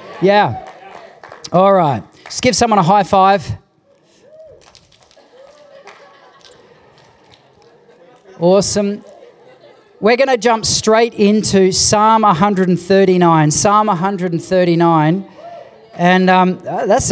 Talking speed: 80 wpm